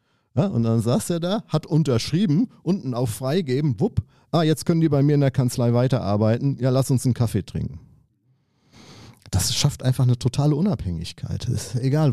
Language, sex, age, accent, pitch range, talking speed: German, male, 40-59, German, 110-140 Hz, 165 wpm